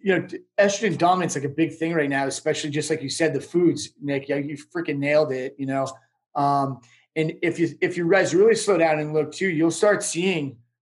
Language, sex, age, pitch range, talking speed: English, male, 30-49, 140-170 Hz, 240 wpm